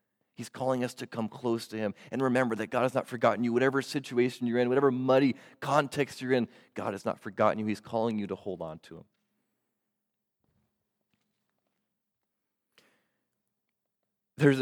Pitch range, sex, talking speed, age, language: 105-135 Hz, male, 160 wpm, 30-49, English